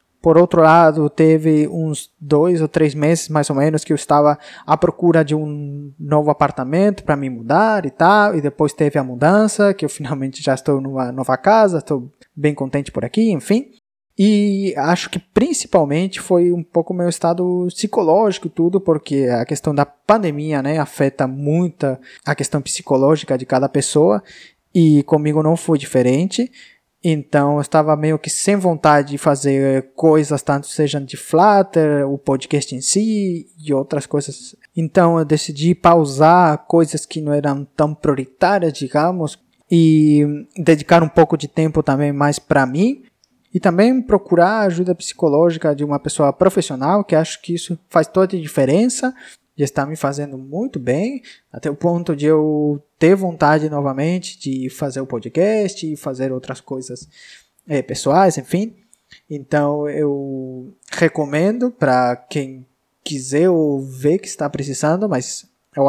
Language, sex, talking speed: Portuguese, male, 155 wpm